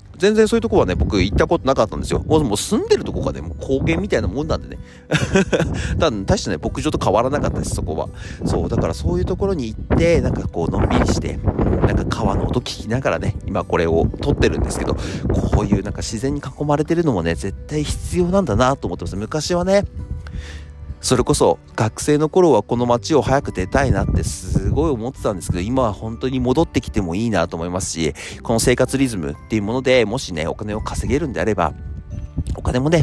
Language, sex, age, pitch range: Japanese, male, 30-49, 90-135 Hz